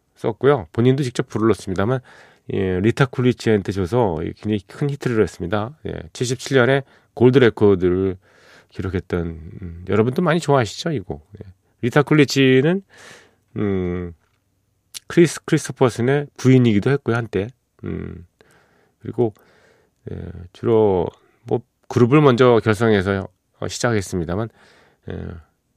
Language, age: Korean, 40-59